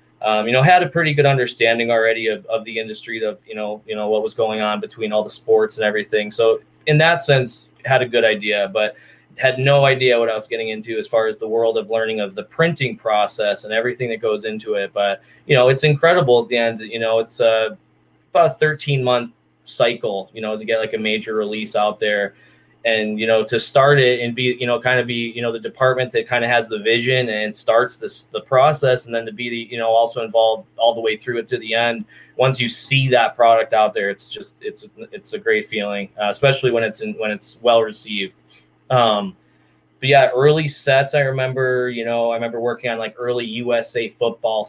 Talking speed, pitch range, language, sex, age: 230 wpm, 110-125 Hz, English, male, 20-39